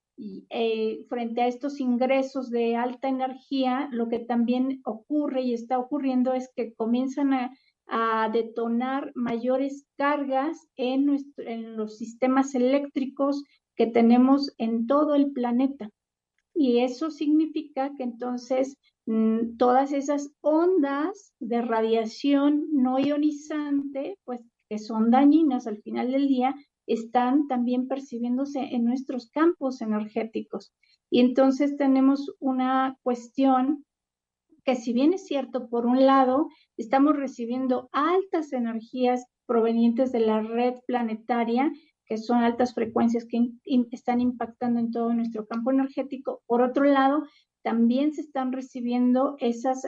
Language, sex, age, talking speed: Spanish, female, 50-69, 125 wpm